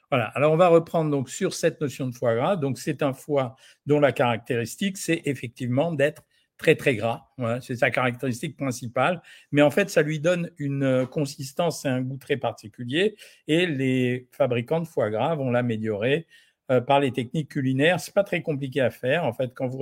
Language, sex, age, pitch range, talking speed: French, male, 50-69, 125-155 Hz, 200 wpm